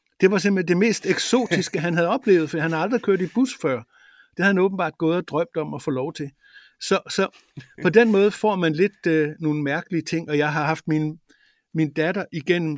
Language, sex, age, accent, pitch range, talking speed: Danish, male, 60-79, native, 150-190 Hz, 230 wpm